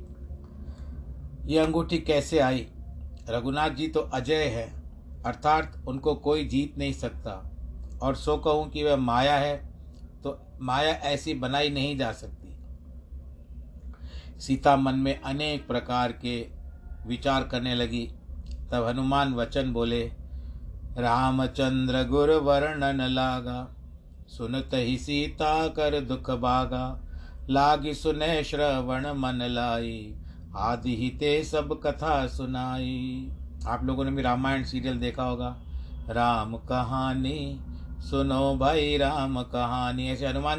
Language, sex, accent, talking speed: Hindi, male, native, 115 wpm